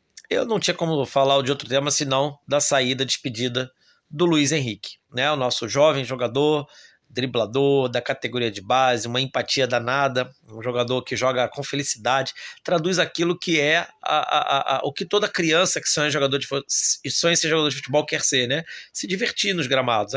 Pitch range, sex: 120-145 Hz, male